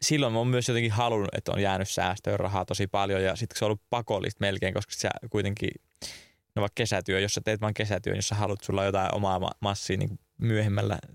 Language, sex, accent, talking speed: English, male, Finnish, 195 wpm